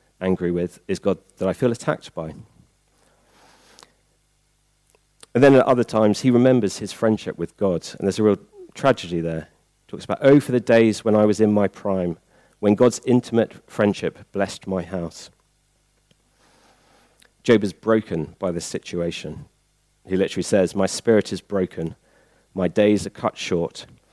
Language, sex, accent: English, male, British